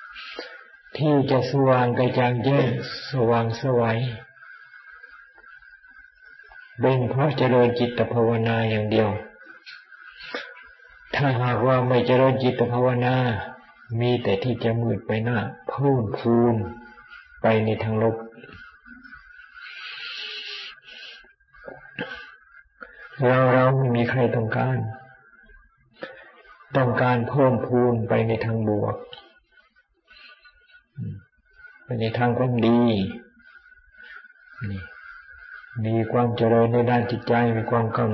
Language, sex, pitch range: Thai, male, 115-135 Hz